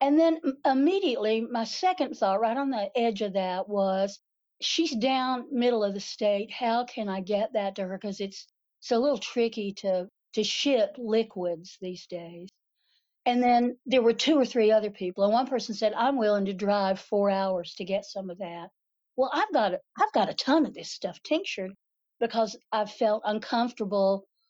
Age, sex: 60-79, female